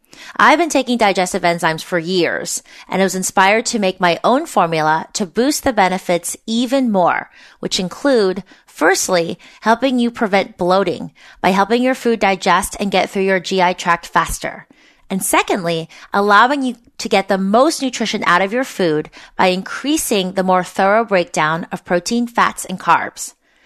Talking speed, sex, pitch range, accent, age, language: 165 wpm, female, 180-235 Hz, American, 30-49, English